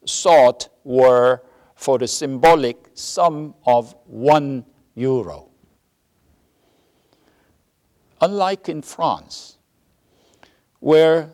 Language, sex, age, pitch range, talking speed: English, male, 60-79, 115-150 Hz, 70 wpm